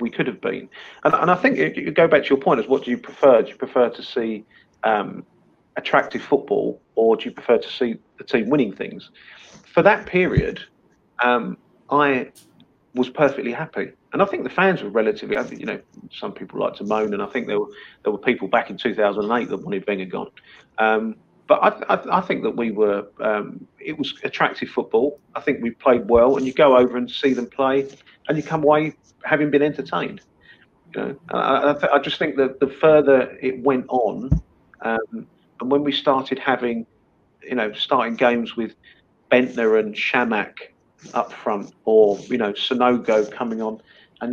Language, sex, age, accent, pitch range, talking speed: English, male, 40-59, British, 115-140 Hz, 195 wpm